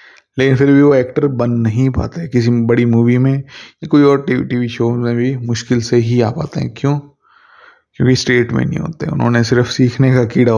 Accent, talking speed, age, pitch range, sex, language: native, 215 wpm, 20-39, 115-135 Hz, male, Hindi